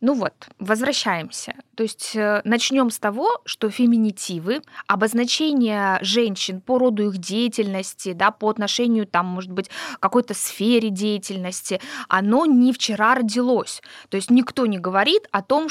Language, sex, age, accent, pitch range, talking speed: Russian, female, 20-39, native, 195-255 Hz, 140 wpm